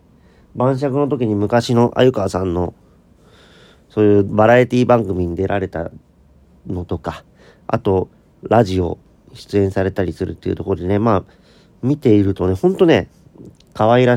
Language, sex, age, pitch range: Japanese, male, 40-59, 90-120 Hz